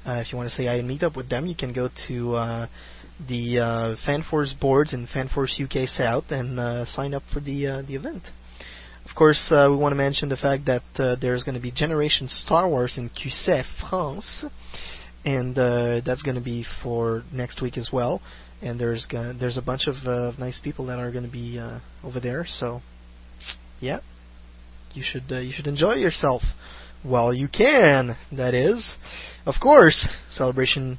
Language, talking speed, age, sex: English, 195 wpm, 20-39, male